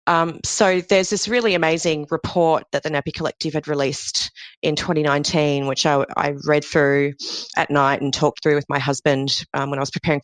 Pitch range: 145-185 Hz